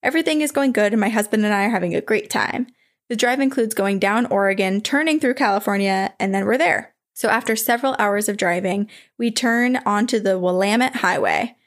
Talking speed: 200 wpm